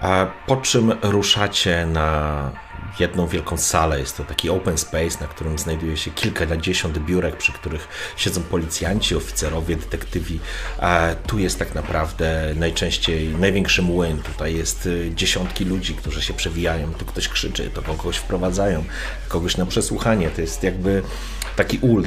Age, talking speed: 30-49, 145 wpm